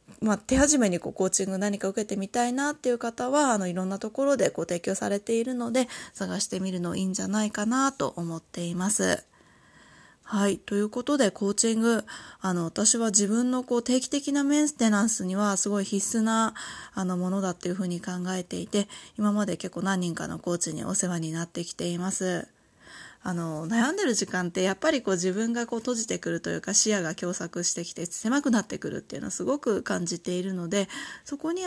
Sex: female